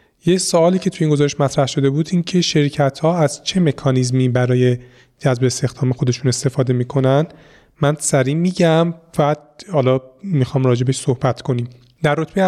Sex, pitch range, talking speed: male, 130-160 Hz, 160 wpm